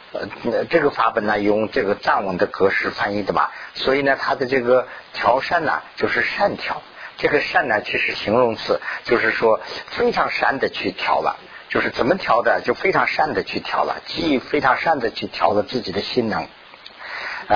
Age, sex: 50-69, male